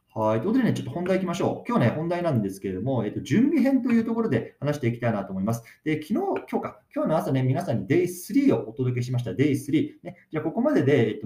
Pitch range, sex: 110-175 Hz, male